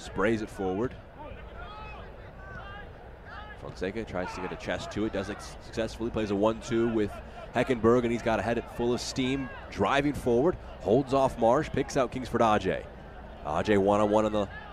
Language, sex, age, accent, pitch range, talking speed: English, male, 30-49, American, 95-125 Hz, 165 wpm